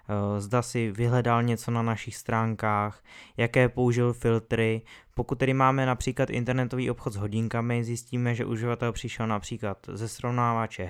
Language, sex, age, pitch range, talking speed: Czech, male, 20-39, 110-130 Hz, 140 wpm